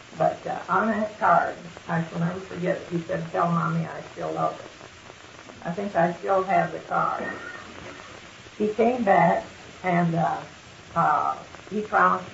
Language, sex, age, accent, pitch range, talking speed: English, female, 60-79, American, 150-190 Hz, 160 wpm